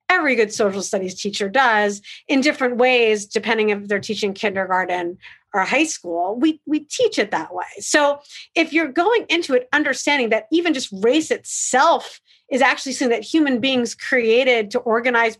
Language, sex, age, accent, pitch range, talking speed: English, female, 40-59, American, 215-295 Hz, 170 wpm